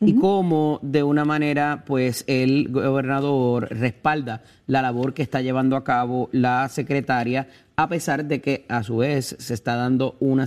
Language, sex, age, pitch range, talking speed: Spanish, male, 30-49, 120-140 Hz, 165 wpm